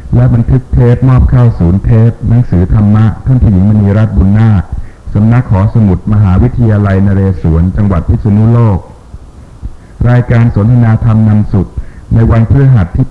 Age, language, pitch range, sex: 60-79, Thai, 95-115 Hz, male